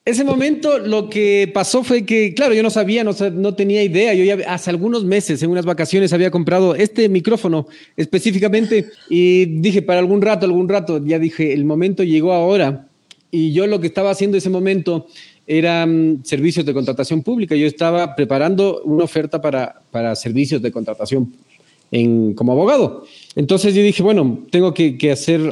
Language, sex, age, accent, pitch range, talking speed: Spanish, male, 40-59, Mexican, 155-195 Hz, 180 wpm